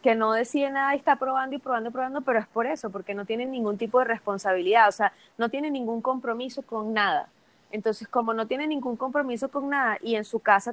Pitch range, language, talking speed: 215-255 Hz, Spanish, 235 wpm